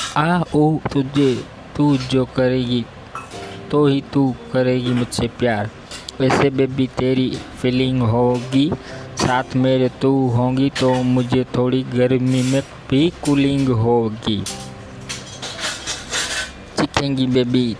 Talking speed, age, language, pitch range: 105 wpm, 20-39, Hindi, 115-130 Hz